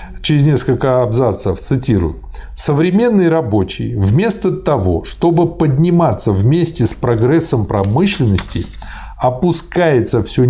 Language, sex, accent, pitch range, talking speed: Russian, male, native, 105-150 Hz, 90 wpm